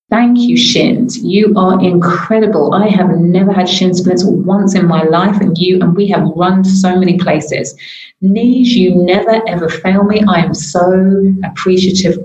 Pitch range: 180-220 Hz